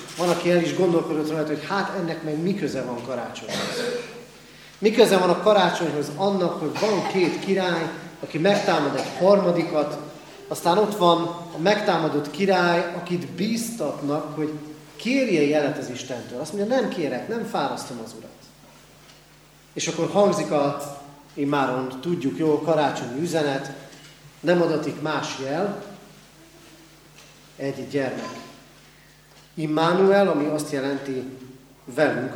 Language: Hungarian